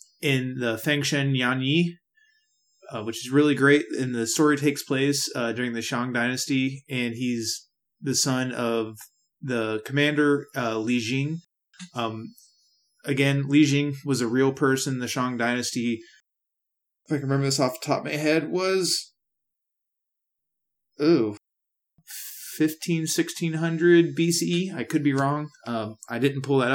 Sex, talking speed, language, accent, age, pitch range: male, 155 wpm, English, American, 20-39, 120-155 Hz